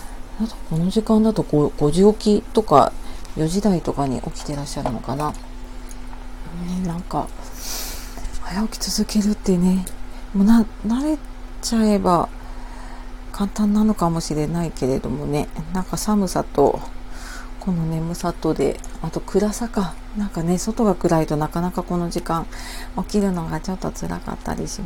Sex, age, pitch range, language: female, 40-59, 155-210 Hz, Japanese